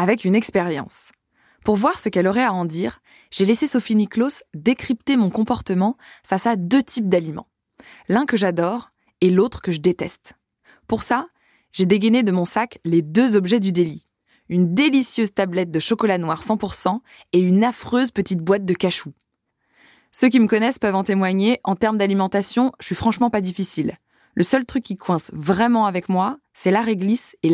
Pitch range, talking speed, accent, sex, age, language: 185-235 Hz, 185 wpm, French, female, 20-39, French